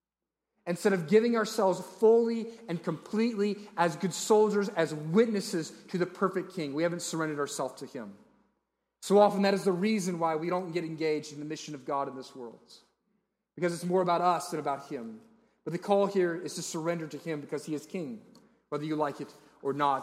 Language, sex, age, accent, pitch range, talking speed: English, male, 30-49, American, 155-210 Hz, 205 wpm